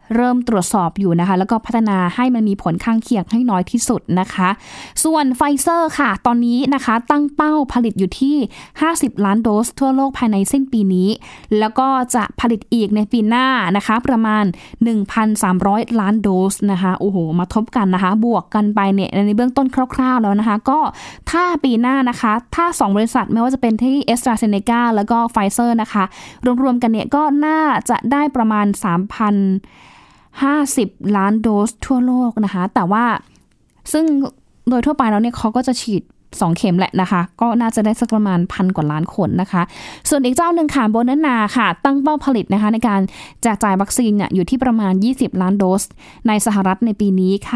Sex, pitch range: female, 195-250 Hz